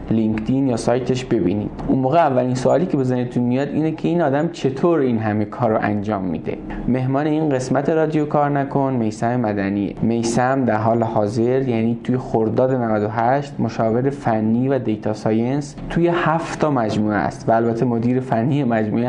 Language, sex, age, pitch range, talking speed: Persian, male, 20-39, 110-135 Hz, 170 wpm